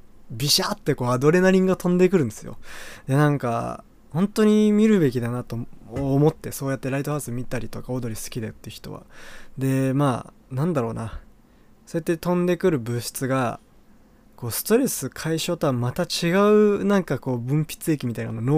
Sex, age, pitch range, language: male, 20-39, 120-175 Hz, Japanese